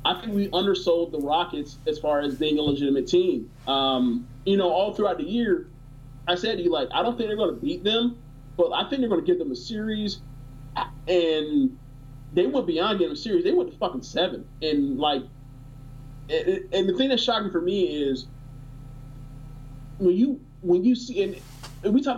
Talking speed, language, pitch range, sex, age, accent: 205 wpm, English, 140-185 Hz, male, 30-49, American